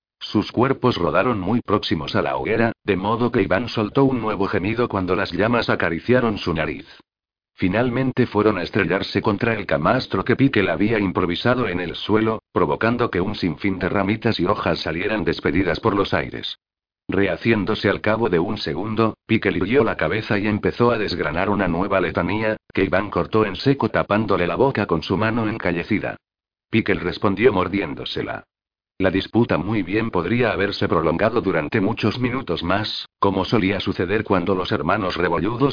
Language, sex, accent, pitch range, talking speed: Spanish, male, Spanish, 95-115 Hz, 165 wpm